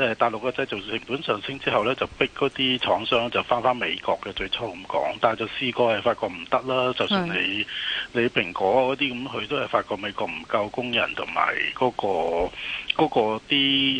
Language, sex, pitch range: Chinese, male, 115-140 Hz